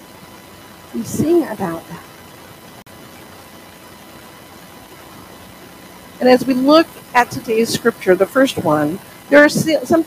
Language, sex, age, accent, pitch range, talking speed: English, female, 50-69, American, 195-270 Hz, 100 wpm